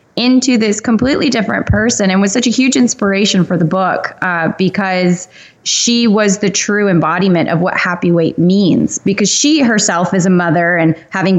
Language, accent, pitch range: English, American, 170-195 Hz